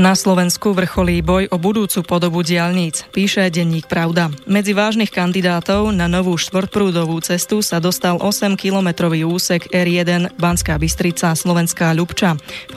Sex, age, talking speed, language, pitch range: female, 20-39, 135 wpm, Slovak, 170-195 Hz